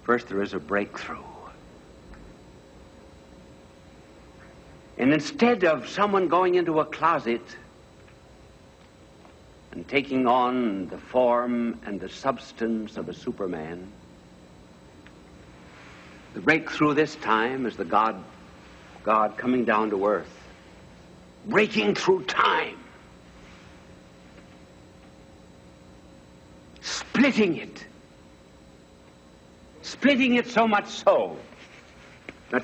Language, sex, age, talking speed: English, male, 60-79, 85 wpm